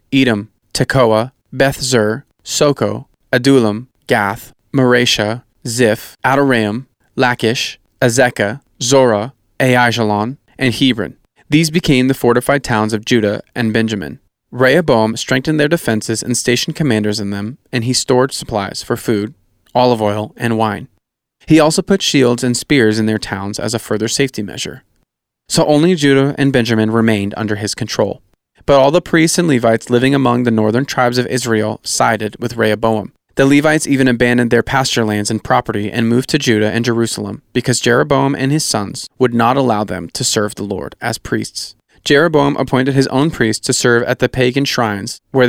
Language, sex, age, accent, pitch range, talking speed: English, male, 20-39, American, 110-135 Hz, 165 wpm